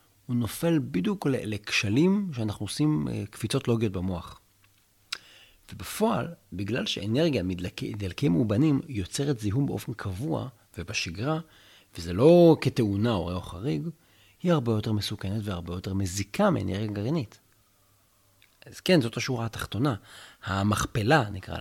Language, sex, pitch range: Hebrew, male, 100-135 Hz